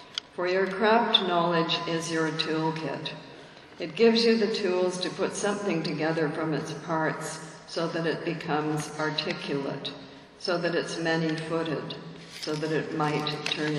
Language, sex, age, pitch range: English, female, 60-79, 145-175 Hz